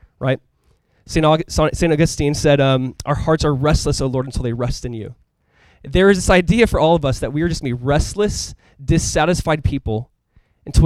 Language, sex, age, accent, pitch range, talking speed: English, male, 20-39, American, 125-160 Hz, 190 wpm